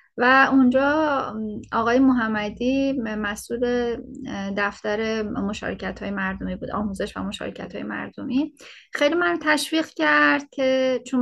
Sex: female